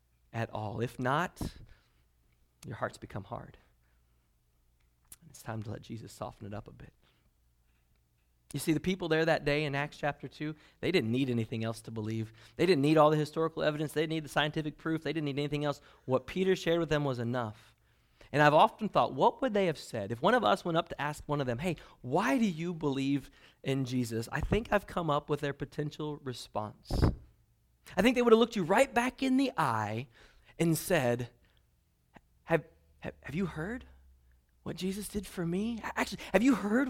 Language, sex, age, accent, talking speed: English, male, 30-49, American, 205 wpm